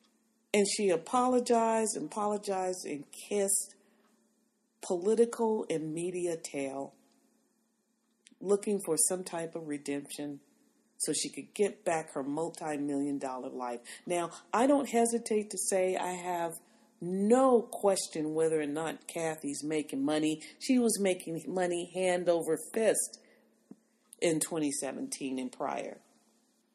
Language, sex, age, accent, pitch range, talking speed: English, female, 40-59, American, 170-235 Hz, 120 wpm